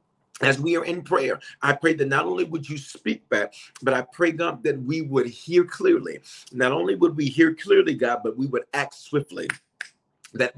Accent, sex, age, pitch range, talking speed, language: American, male, 40-59, 130-180 Hz, 205 wpm, English